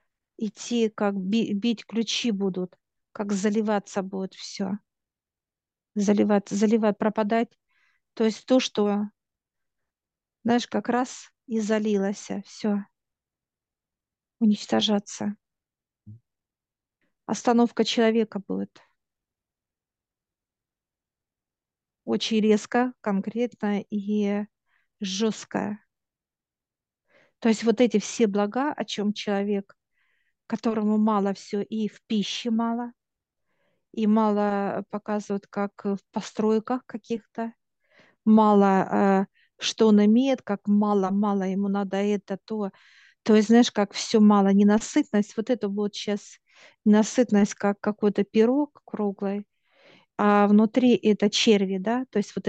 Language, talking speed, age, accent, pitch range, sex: Russian, 105 wpm, 50-69, native, 200-225 Hz, female